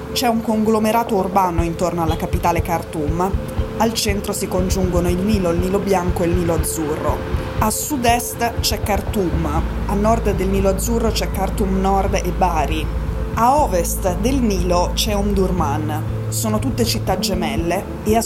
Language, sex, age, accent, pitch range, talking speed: Italian, female, 20-39, native, 165-205 Hz, 155 wpm